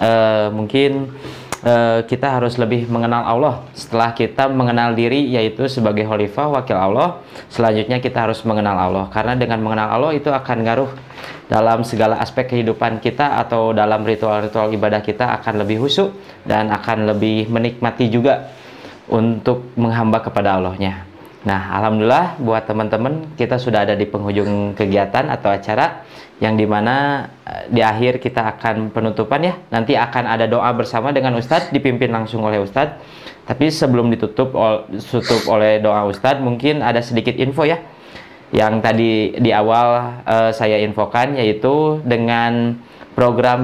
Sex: male